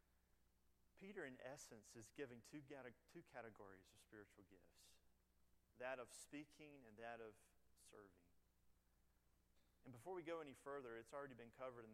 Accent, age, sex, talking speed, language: American, 40-59, male, 140 wpm, English